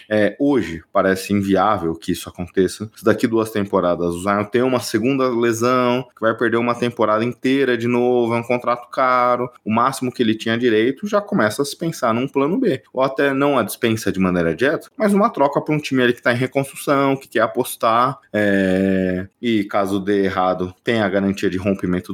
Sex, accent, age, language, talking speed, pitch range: male, Brazilian, 20-39, Portuguese, 205 wpm, 95-125 Hz